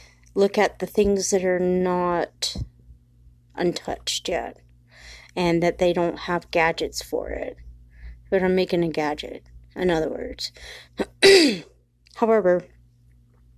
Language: English